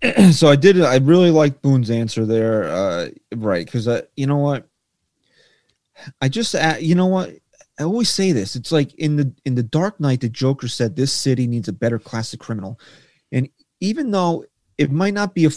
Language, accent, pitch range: English, American, 130-180 Hz